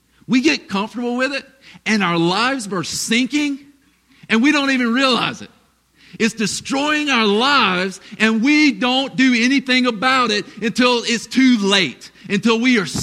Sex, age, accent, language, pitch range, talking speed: male, 40-59, American, English, 200-260 Hz, 155 wpm